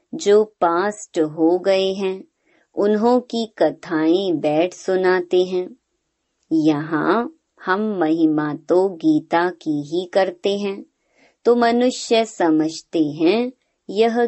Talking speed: 105 wpm